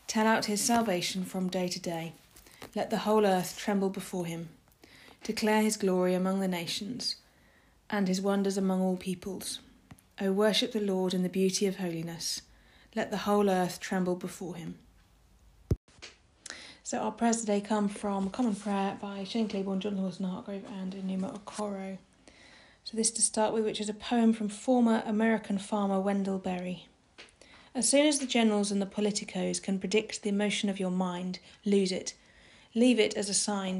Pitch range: 195-220 Hz